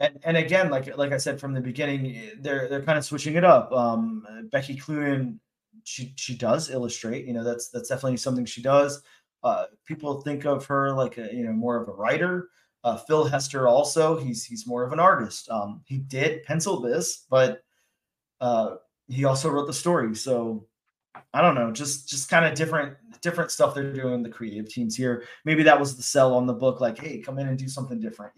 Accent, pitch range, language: American, 125-155 Hz, English